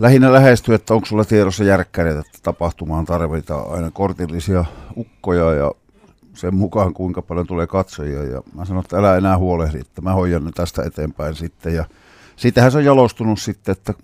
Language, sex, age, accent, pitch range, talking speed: Finnish, male, 50-69, native, 85-105 Hz, 165 wpm